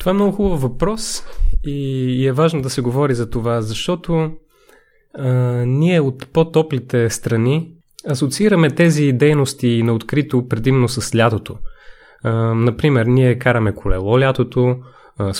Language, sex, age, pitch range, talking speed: Bulgarian, male, 20-39, 120-150 Hz, 135 wpm